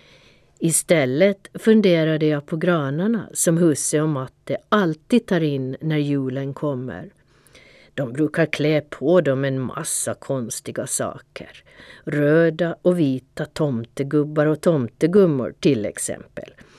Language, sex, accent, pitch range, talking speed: Swedish, female, native, 135-180 Hz, 115 wpm